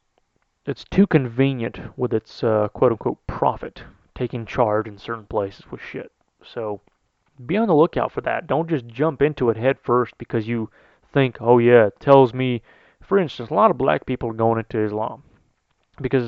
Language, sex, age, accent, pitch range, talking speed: English, male, 30-49, American, 115-145 Hz, 180 wpm